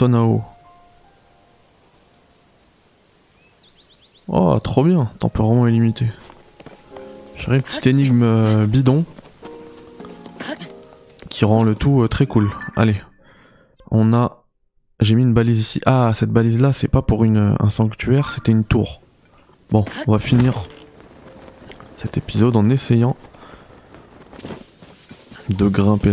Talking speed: 110 wpm